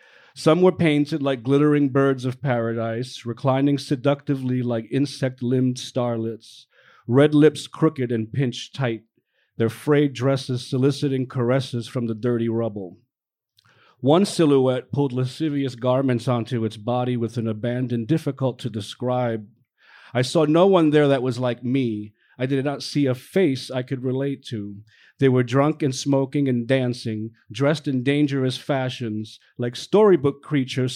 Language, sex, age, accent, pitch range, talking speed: English, male, 40-59, American, 120-140 Hz, 145 wpm